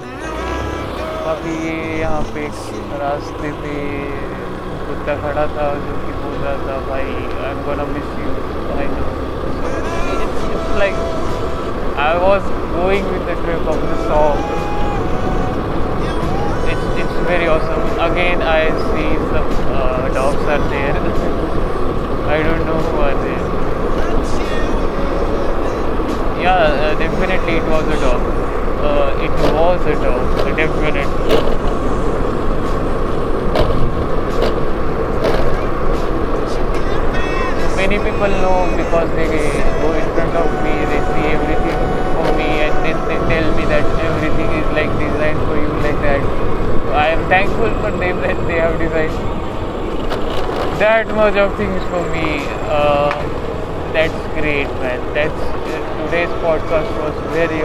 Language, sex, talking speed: Marathi, male, 95 wpm